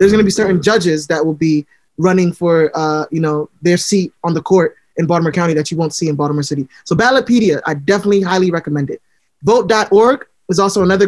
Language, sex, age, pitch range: English, male, 20-39, 170-205 Hz